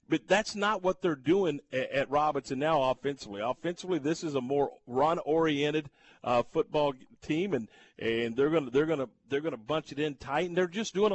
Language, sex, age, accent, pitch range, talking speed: English, male, 50-69, American, 135-185 Hz, 190 wpm